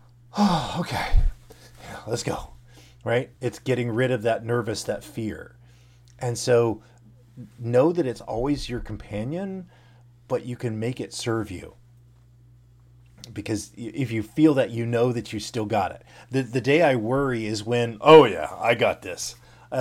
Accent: American